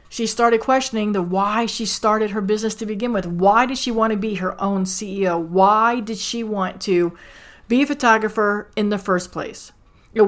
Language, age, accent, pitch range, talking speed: English, 40-59, American, 185-225 Hz, 200 wpm